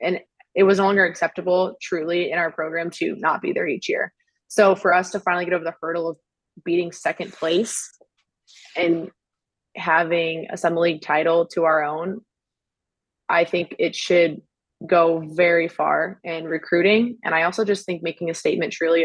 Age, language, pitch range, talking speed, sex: 20-39, English, 165-185 Hz, 175 wpm, female